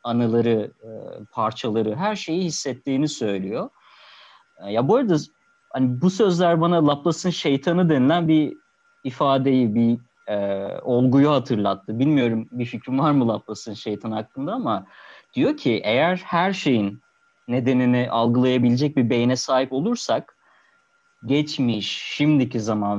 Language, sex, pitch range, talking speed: Turkish, male, 120-170 Hz, 115 wpm